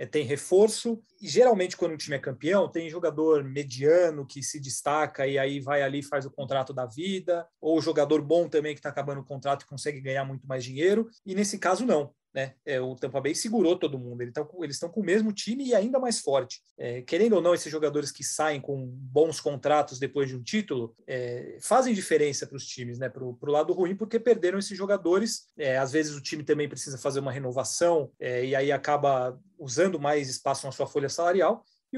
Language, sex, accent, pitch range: Portuguese, male, Brazilian, 140-180 Hz